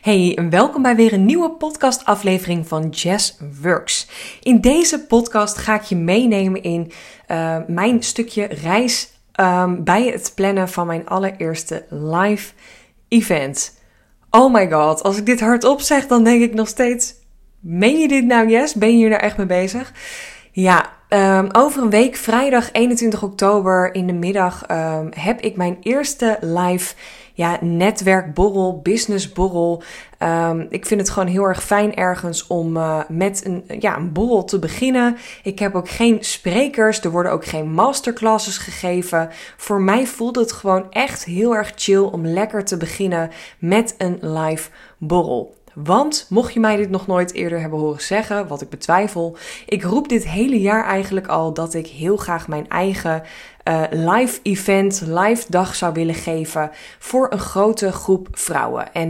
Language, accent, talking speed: Dutch, Dutch, 160 wpm